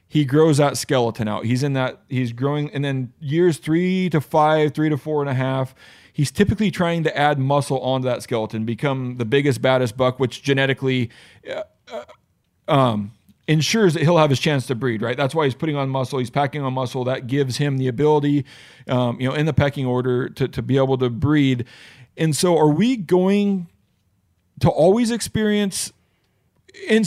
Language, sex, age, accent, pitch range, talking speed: English, male, 40-59, American, 130-160 Hz, 190 wpm